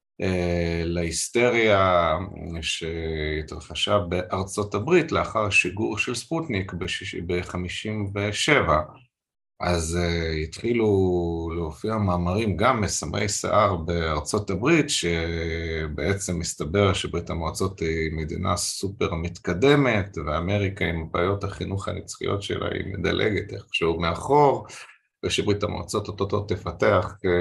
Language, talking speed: Hebrew, 90 wpm